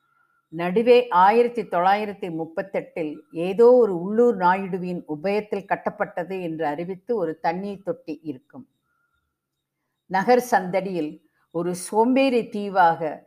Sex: female